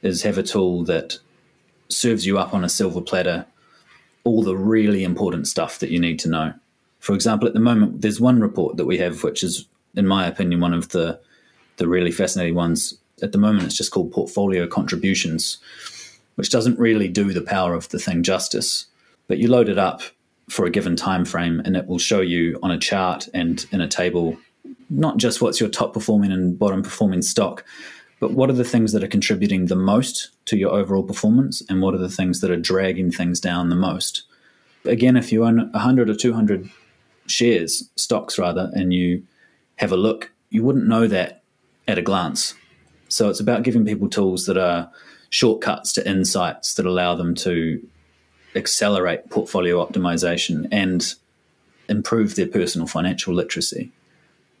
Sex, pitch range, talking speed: male, 90-110 Hz, 180 wpm